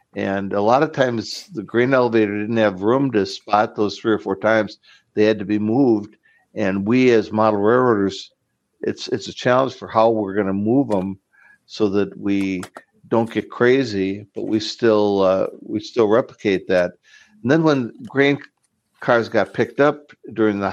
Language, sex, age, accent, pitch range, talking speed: English, male, 60-79, American, 105-120 Hz, 180 wpm